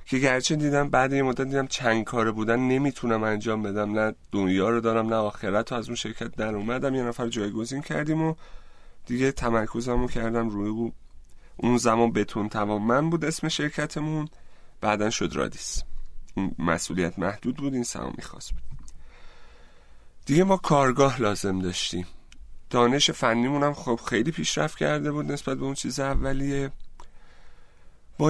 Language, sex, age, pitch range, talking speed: Persian, male, 30-49, 105-140 Hz, 155 wpm